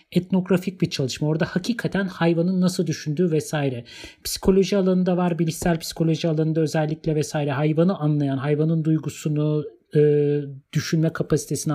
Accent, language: native, Turkish